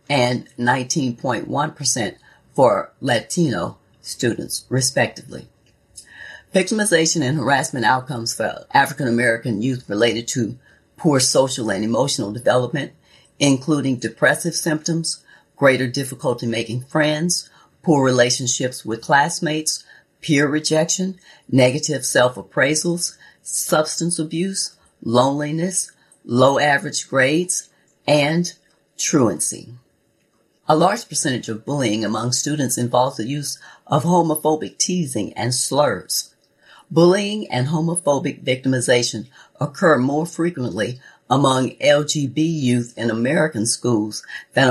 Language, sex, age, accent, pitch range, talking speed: English, female, 40-59, American, 125-155 Hz, 95 wpm